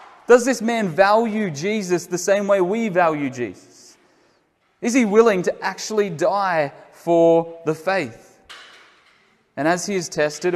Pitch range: 160-210 Hz